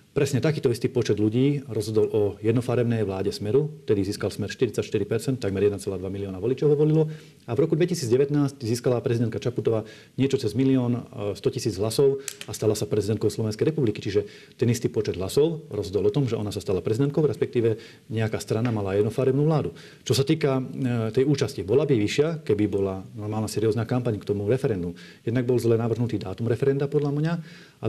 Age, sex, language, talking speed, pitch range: 40-59, male, Slovak, 180 wpm, 105-135 Hz